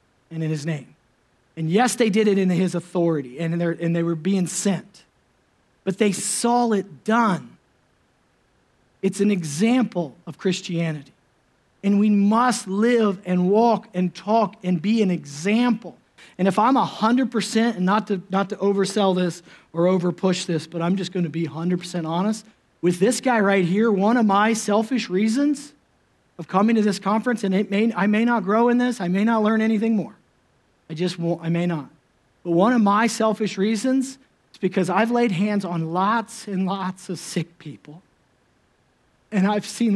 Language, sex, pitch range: English, male, 180-235 Hz